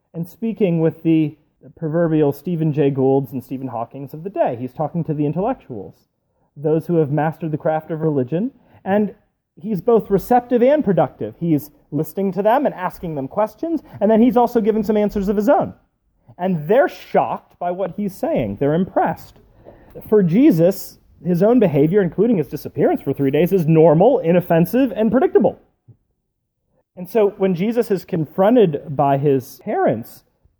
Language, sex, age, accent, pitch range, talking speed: English, male, 30-49, American, 140-200 Hz, 165 wpm